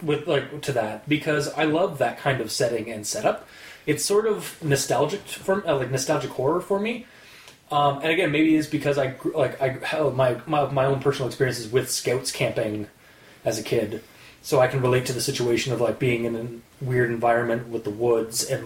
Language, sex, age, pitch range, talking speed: English, male, 20-39, 120-150 Hz, 205 wpm